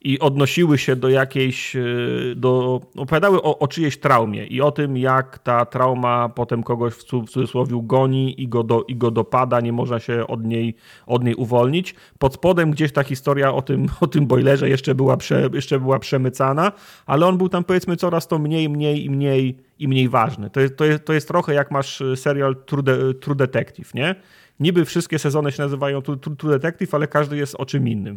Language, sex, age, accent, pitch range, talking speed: Polish, male, 30-49, native, 125-150 Hz, 200 wpm